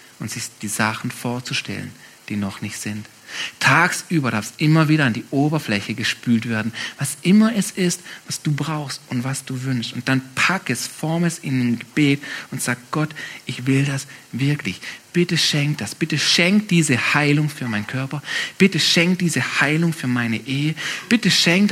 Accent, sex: German, male